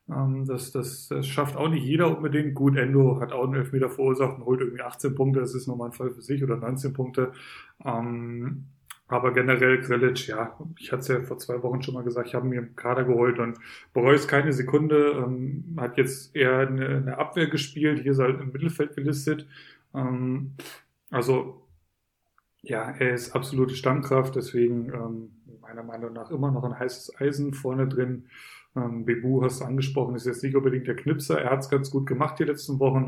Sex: male